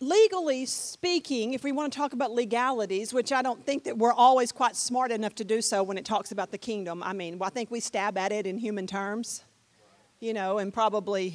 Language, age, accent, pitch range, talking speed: English, 50-69, American, 215-290 Hz, 225 wpm